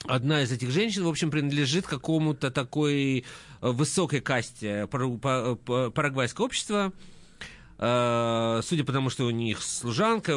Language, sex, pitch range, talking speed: Russian, male, 120-175 Hz, 115 wpm